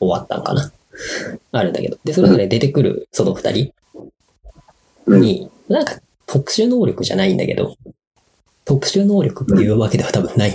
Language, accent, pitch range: Japanese, native, 100-165 Hz